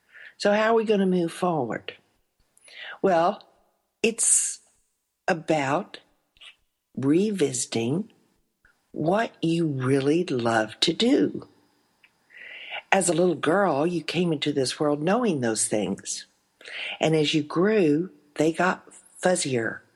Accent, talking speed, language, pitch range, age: American, 110 wpm, English, 145-210 Hz, 60-79